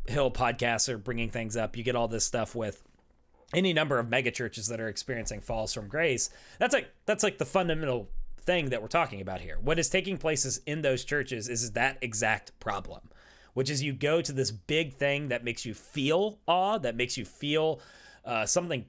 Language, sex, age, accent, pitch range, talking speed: English, male, 30-49, American, 115-150 Hz, 205 wpm